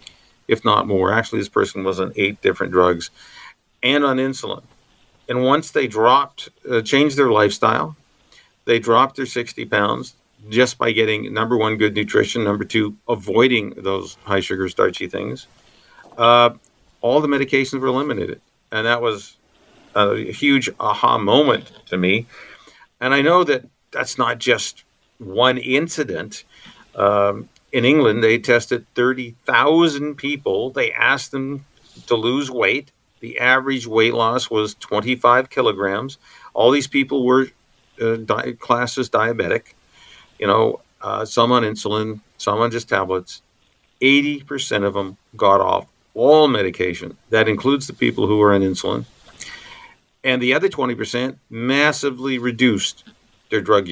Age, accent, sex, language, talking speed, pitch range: 50-69, American, male, English, 140 wpm, 110-135 Hz